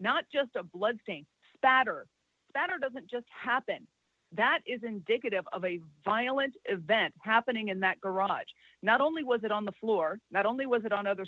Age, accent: 40-59, American